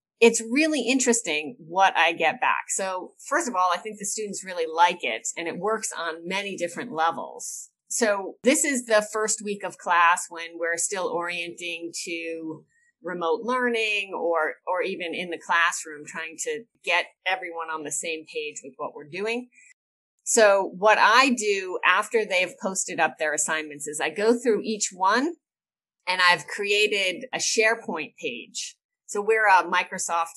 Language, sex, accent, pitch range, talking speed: English, female, American, 170-235 Hz, 165 wpm